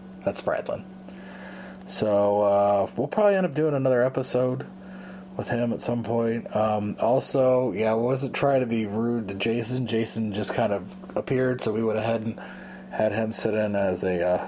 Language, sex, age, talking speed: English, male, 30-49, 180 wpm